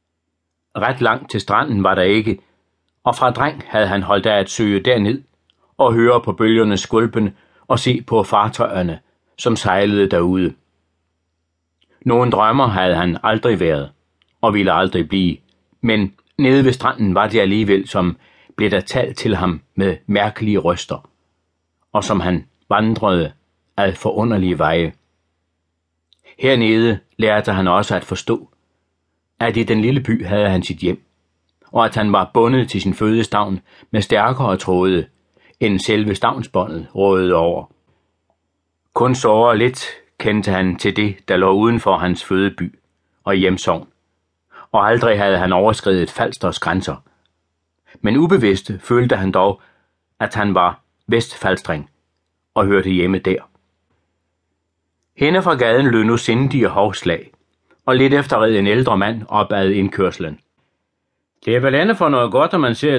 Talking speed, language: 145 wpm, Danish